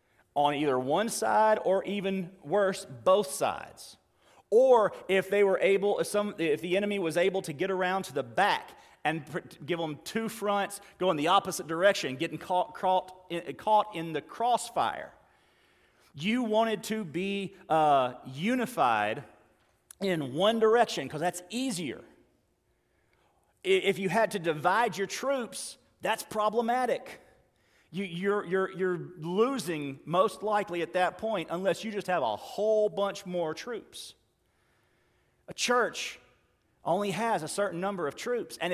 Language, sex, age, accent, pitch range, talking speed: English, male, 40-59, American, 170-215 Hz, 140 wpm